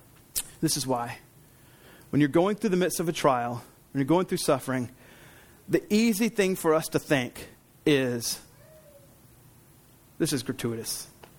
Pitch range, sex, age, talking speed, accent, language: 130-200 Hz, male, 40-59, 150 wpm, American, English